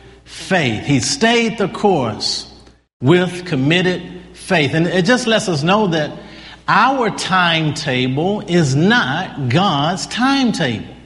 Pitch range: 160-235 Hz